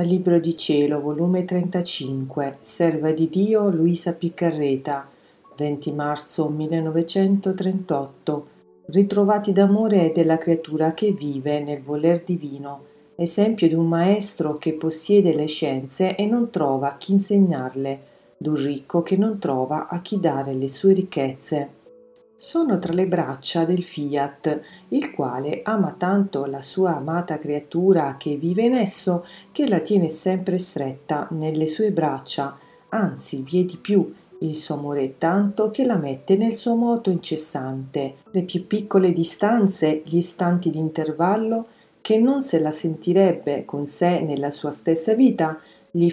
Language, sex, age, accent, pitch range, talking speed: Italian, female, 40-59, native, 150-195 Hz, 140 wpm